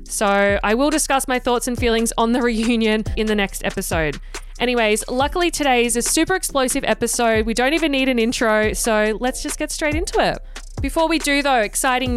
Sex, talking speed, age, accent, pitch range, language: female, 200 wpm, 20-39, Australian, 205-255 Hz, English